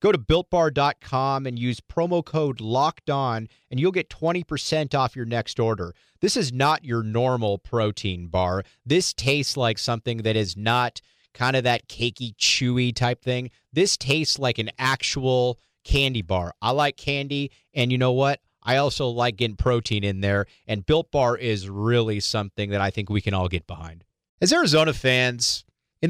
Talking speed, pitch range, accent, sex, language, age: 175 wpm, 105-140 Hz, American, male, English, 30-49